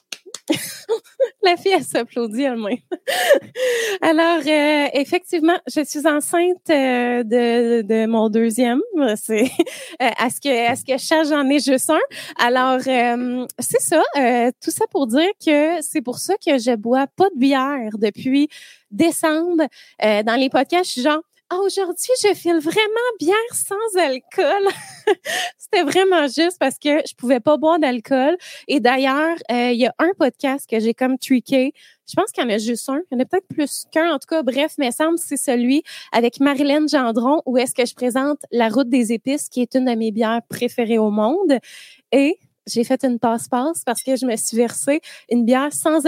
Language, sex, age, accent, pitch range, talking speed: French, female, 20-39, Canadian, 240-315 Hz, 190 wpm